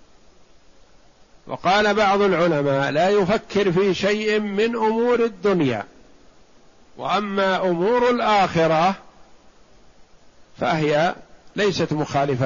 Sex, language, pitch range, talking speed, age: male, Arabic, 150-195 Hz, 75 wpm, 50-69